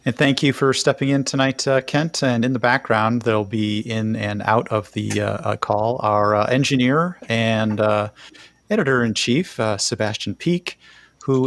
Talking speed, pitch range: 175 wpm, 110-135 Hz